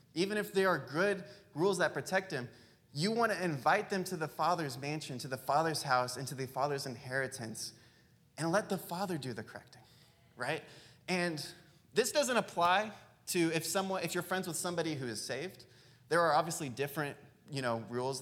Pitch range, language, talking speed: 125-170 Hz, English, 185 wpm